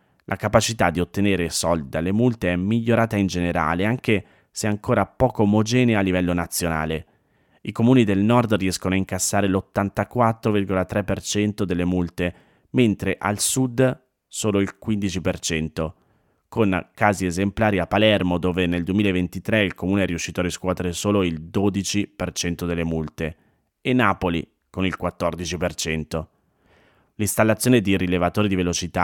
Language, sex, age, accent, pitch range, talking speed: Italian, male, 30-49, native, 90-105 Hz, 130 wpm